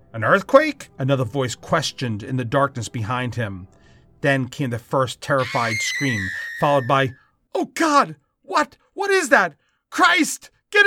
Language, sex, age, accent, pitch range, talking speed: English, male, 40-59, American, 120-170 Hz, 145 wpm